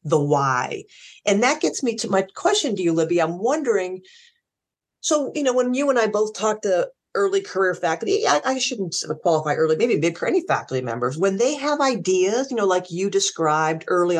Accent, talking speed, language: American, 205 wpm, English